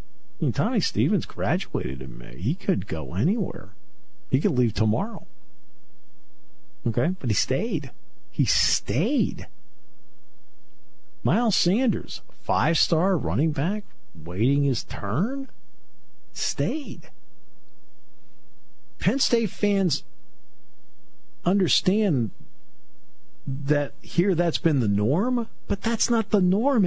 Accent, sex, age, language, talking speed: American, male, 50-69, English, 105 wpm